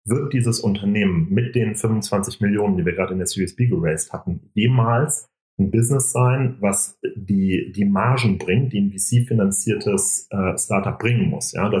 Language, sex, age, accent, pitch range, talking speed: German, male, 40-59, German, 100-120 Hz, 165 wpm